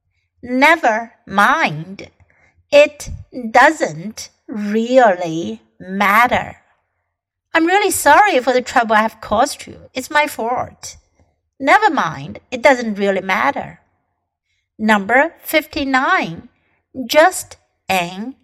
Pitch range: 180-285 Hz